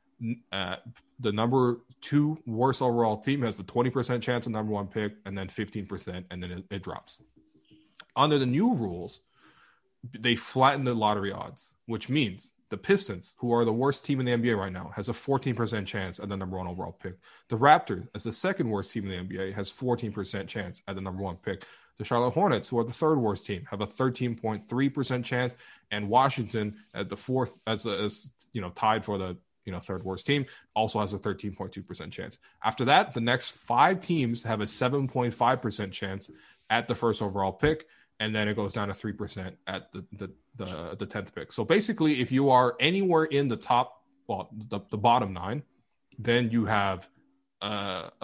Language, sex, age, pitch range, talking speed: English, male, 20-39, 100-125 Hz, 205 wpm